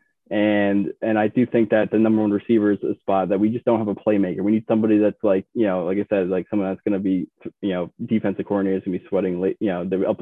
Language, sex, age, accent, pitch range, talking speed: English, male, 20-39, American, 95-110 Hz, 275 wpm